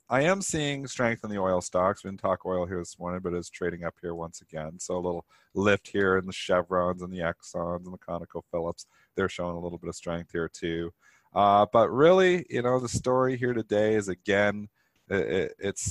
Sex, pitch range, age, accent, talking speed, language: male, 95-125 Hz, 40-59, American, 220 wpm, English